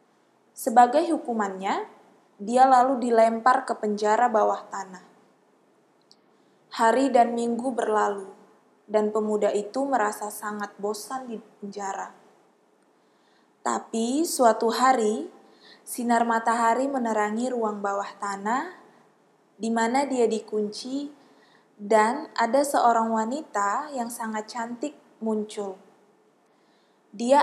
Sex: female